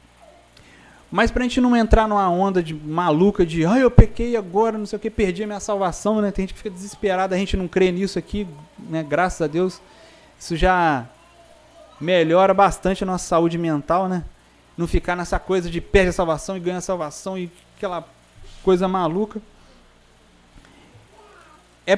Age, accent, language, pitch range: 30-49, Brazilian, Portuguese, 155-210 Hz